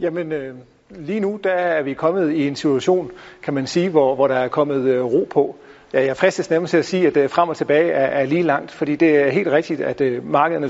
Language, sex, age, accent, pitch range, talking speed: Danish, male, 40-59, native, 135-170 Hz, 250 wpm